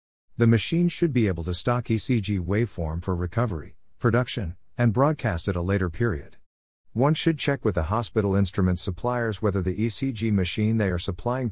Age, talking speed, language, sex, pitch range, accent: 50-69, 170 wpm, English, male, 90-120 Hz, American